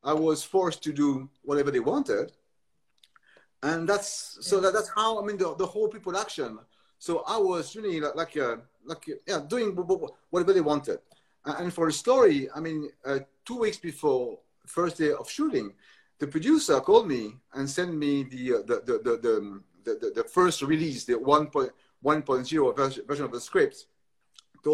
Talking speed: 180 wpm